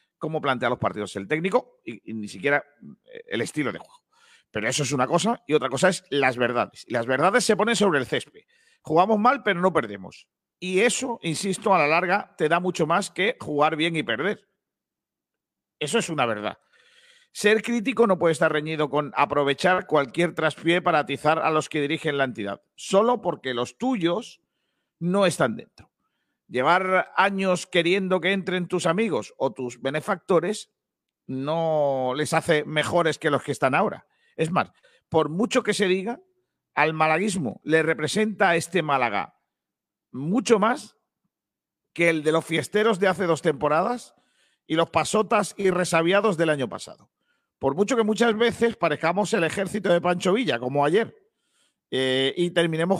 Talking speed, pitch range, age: 170 wpm, 155-210 Hz, 50-69